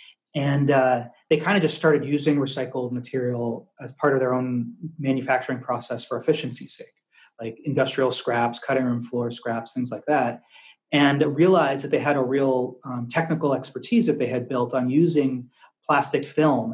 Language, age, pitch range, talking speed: English, 30-49, 125-150 Hz, 175 wpm